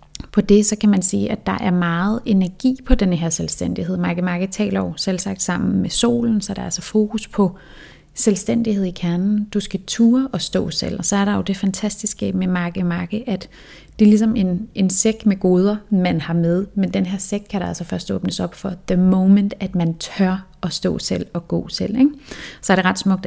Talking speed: 225 wpm